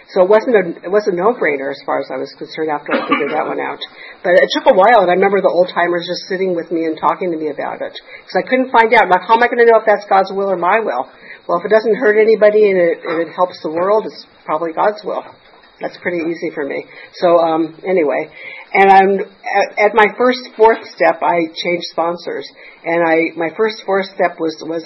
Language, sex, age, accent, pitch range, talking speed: English, female, 50-69, American, 170-210 Hz, 255 wpm